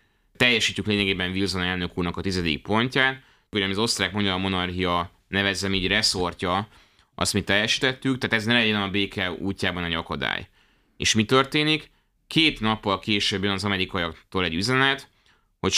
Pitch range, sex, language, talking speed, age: 90-110 Hz, male, Hungarian, 150 wpm, 30-49